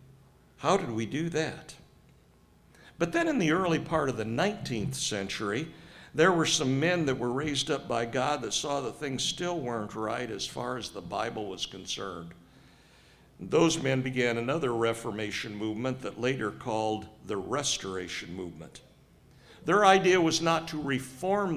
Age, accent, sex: 60-79, American, male